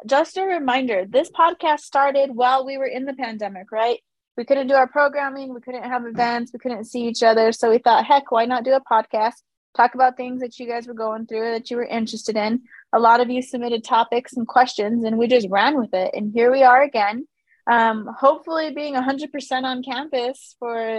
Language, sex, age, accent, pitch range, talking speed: English, female, 20-39, American, 225-270 Hz, 215 wpm